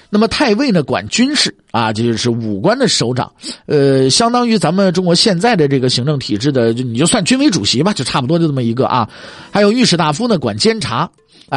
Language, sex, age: Chinese, male, 50-69